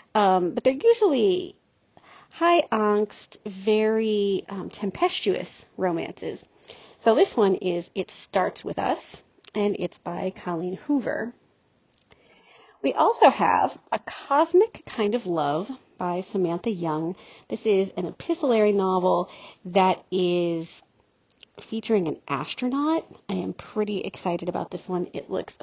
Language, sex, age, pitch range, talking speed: English, female, 40-59, 180-220 Hz, 125 wpm